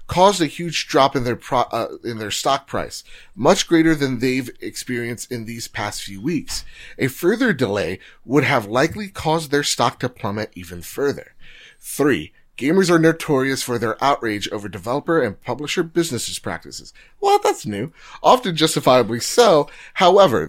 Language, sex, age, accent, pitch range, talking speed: English, male, 30-49, American, 110-160 Hz, 160 wpm